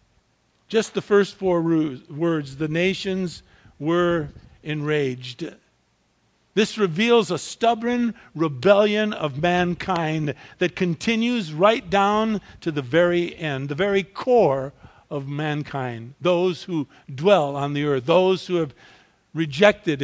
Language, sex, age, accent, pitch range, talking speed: English, male, 50-69, American, 155-205 Hz, 115 wpm